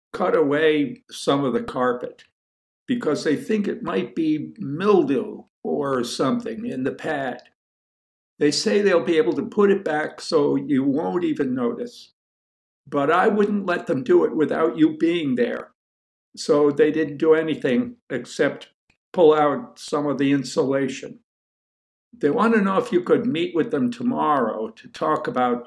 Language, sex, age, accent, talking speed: English, male, 60-79, American, 160 wpm